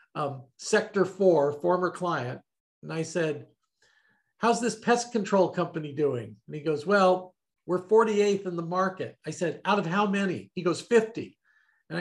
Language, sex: English, male